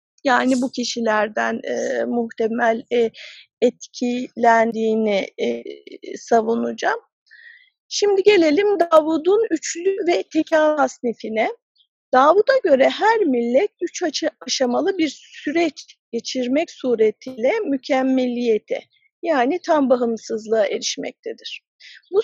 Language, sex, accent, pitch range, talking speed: English, female, Turkish, 245-370 Hz, 85 wpm